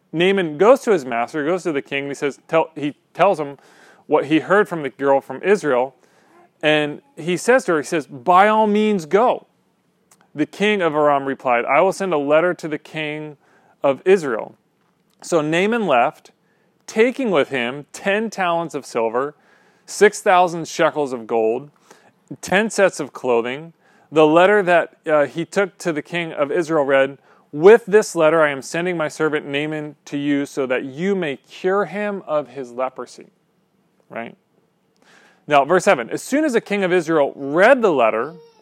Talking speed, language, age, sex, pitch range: 175 wpm, English, 40-59, male, 145-200 Hz